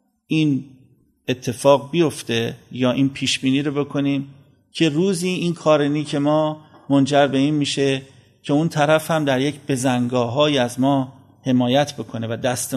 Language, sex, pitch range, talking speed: Persian, male, 130-155 Hz, 155 wpm